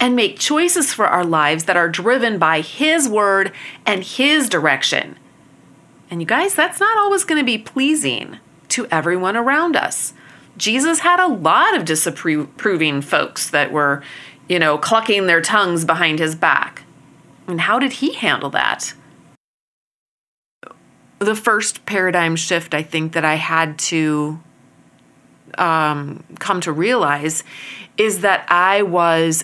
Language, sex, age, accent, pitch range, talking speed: English, female, 30-49, American, 160-210 Hz, 145 wpm